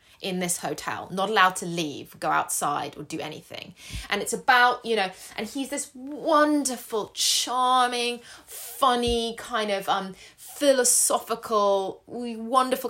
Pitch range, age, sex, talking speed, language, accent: 175-240 Hz, 20-39, female, 130 wpm, English, British